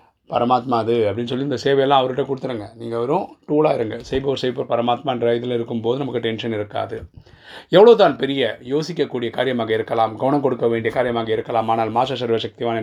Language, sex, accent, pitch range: Tamil, male, native, 110-120 Hz